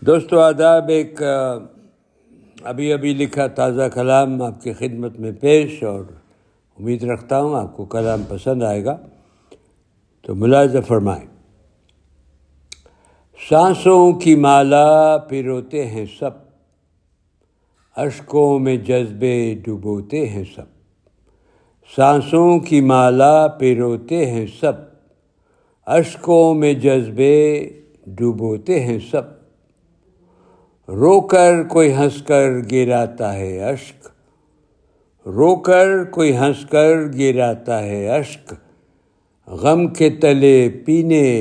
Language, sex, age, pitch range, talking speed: Urdu, male, 60-79, 110-150 Hz, 100 wpm